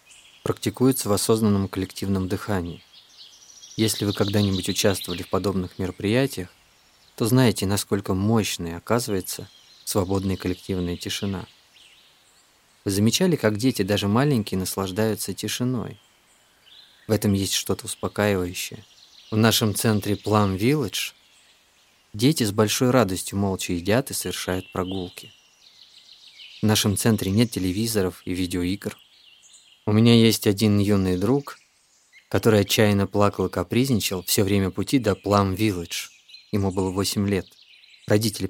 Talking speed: 115 wpm